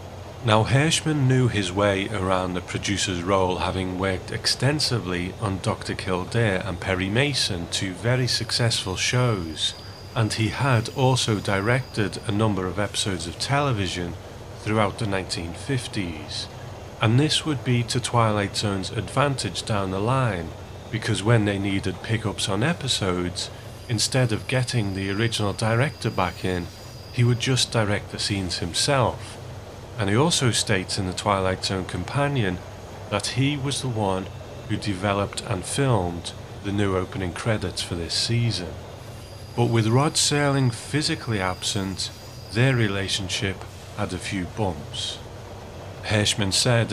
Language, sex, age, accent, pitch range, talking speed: English, male, 30-49, British, 95-120 Hz, 140 wpm